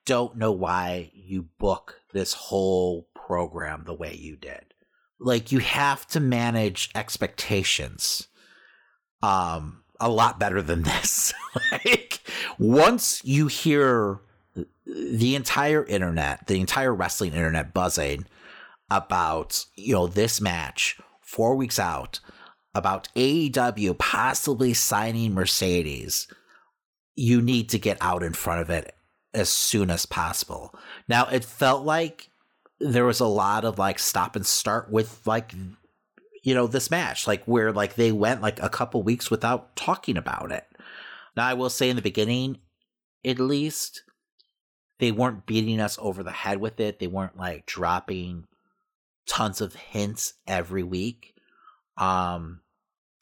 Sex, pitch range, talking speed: male, 95-125 Hz, 140 wpm